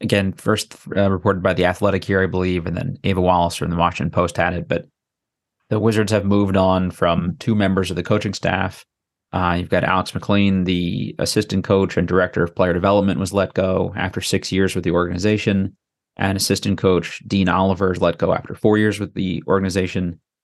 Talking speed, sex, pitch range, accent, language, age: 200 wpm, male, 95-105 Hz, American, English, 30-49